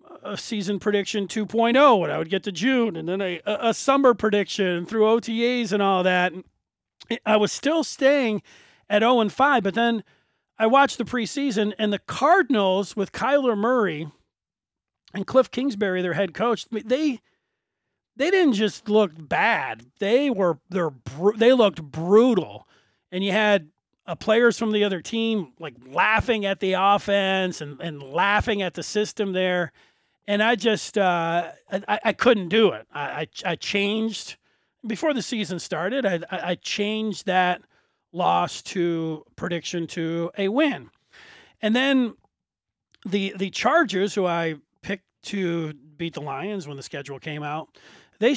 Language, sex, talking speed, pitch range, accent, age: English, male, 160 wpm, 170-230 Hz, American, 40-59